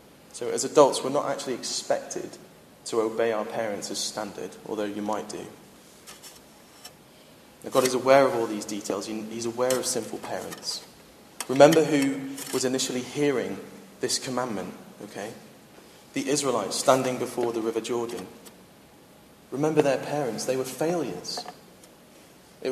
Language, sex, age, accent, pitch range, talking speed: English, male, 30-49, British, 115-140 Hz, 135 wpm